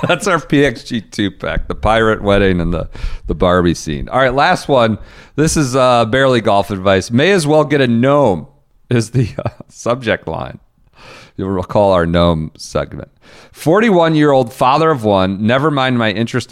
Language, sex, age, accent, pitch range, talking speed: English, male, 40-59, American, 100-145 Hz, 165 wpm